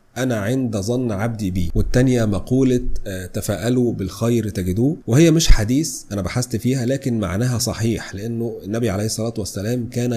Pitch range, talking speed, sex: 105-125 Hz, 150 wpm, male